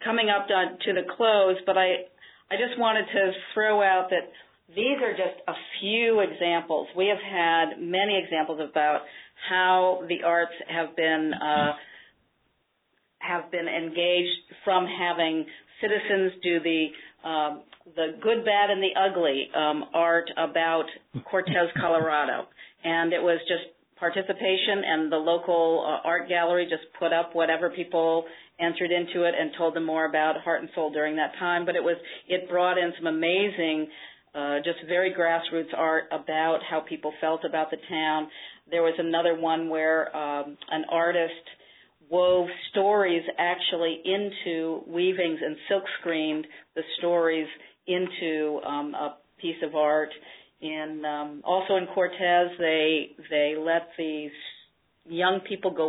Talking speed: 150 wpm